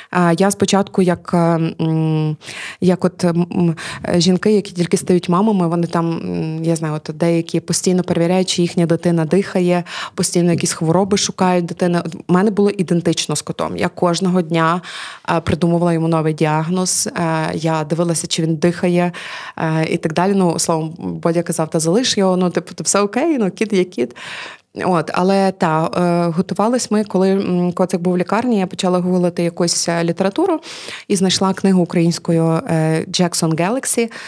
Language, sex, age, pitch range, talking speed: Ukrainian, female, 20-39, 165-190 Hz, 145 wpm